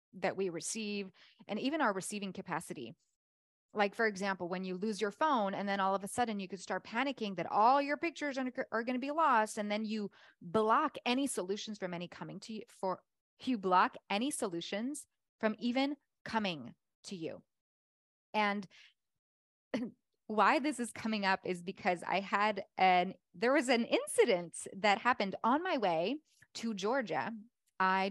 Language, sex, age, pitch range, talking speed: English, female, 20-39, 185-245 Hz, 170 wpm